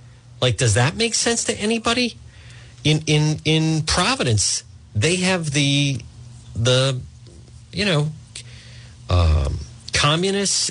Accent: American